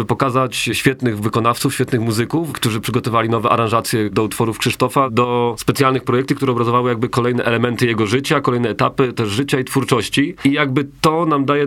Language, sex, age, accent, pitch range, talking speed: Polish, male, 30-49, native, 105-130 Hz, 170 wpm